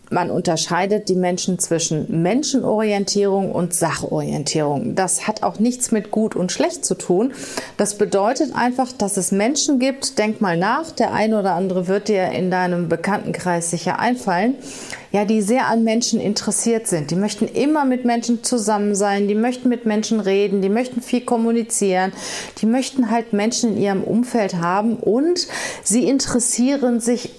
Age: 40-59